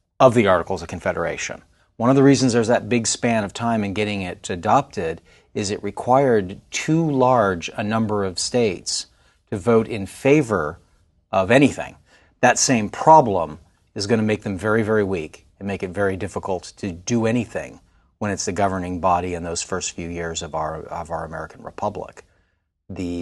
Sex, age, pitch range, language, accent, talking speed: male, 40-59, 90-115 Hz, English, American, 180 wpm